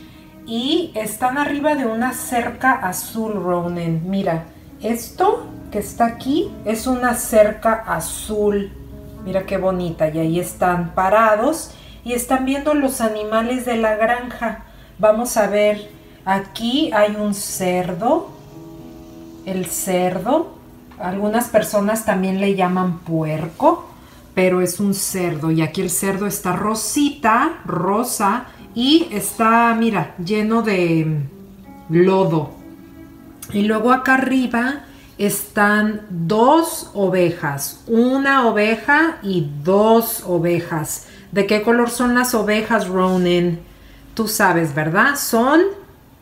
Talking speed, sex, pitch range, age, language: 115 wpm, female, 180-240 Hz, 40-59, English